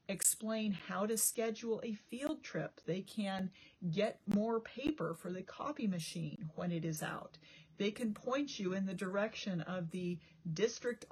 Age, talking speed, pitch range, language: 40-59, 160 wpm, 170-210 Hz, English